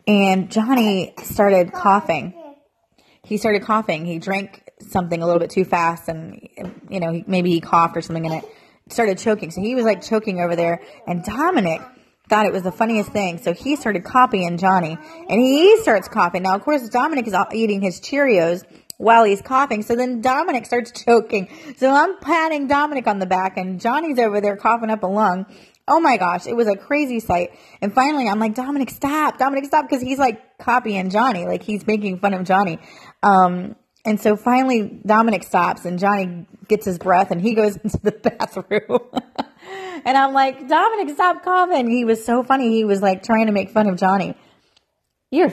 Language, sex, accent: English, female, American